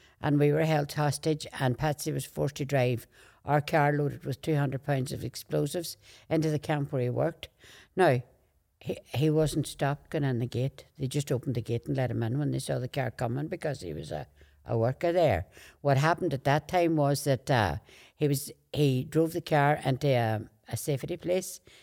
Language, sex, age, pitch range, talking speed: English, female, 60-79, 125-160 Hz, 205 wpm